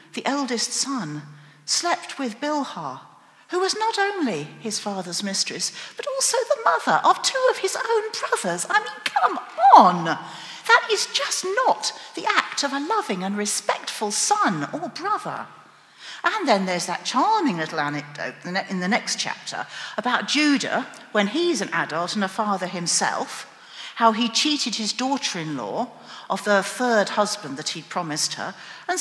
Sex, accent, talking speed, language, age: female, British, 155 wpm, English, 50-69